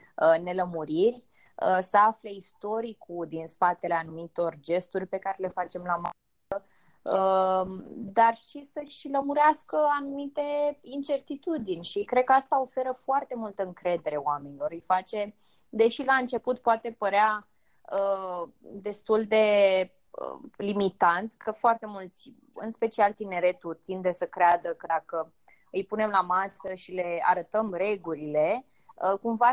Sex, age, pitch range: female, 20-39, 180-235 Hz